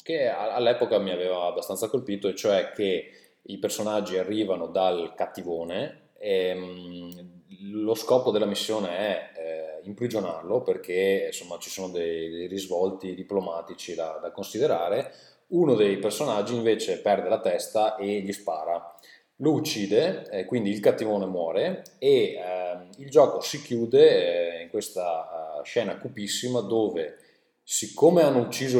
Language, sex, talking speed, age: Italian, male, 125 wpm, 20-39